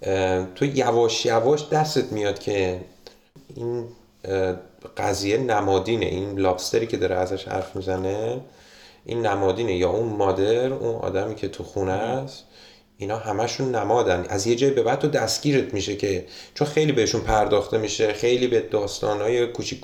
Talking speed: 150 wpm